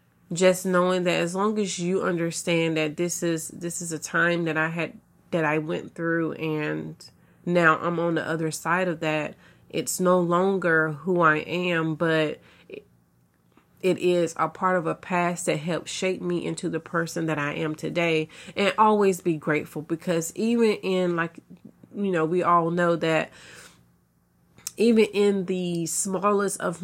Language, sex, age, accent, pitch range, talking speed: English, female, 30-49, American, 155-185 Hz, 170 wpm